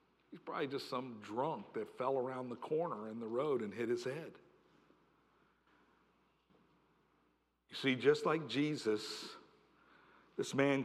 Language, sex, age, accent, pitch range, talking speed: English, male, 50-69, American, 175-245 Hz, 135 wpm